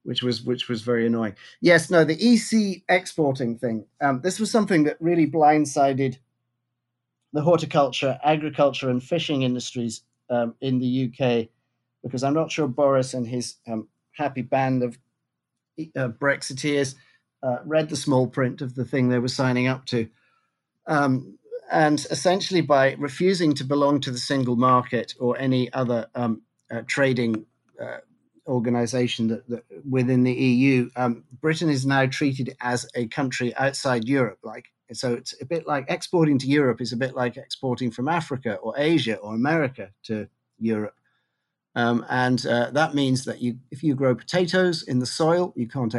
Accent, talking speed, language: British, 165 wpm, English